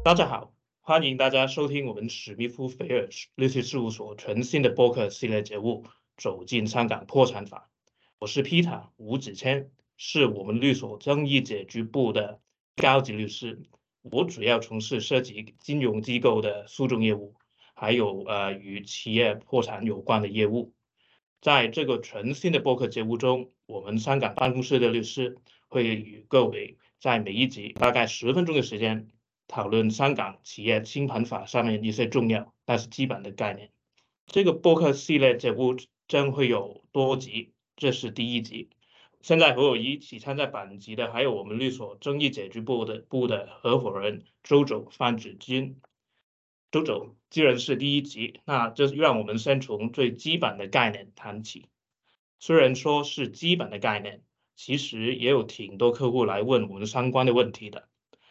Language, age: English, 20-39